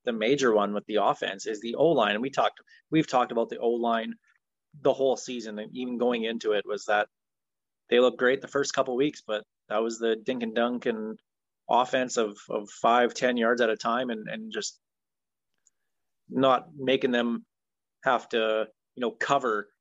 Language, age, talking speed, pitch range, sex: English, 20-39, 190 wpm, 115-145 Hz, male